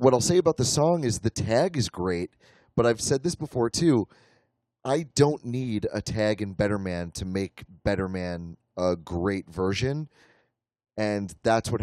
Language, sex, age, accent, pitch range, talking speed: English, male, 30-49, American, 105-140 Hz, 180 wpm